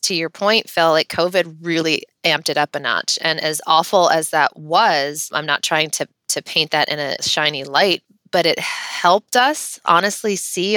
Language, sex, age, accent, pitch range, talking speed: English, female, 20-39, American, 155-200 Hz, 195 wpm